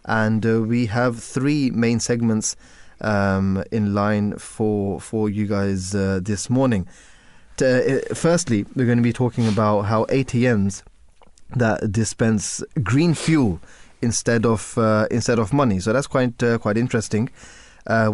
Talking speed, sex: 150 wpm, male